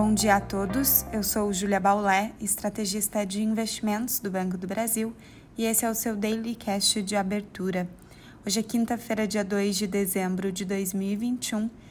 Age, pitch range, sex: 20-39, 200-220 Hz, female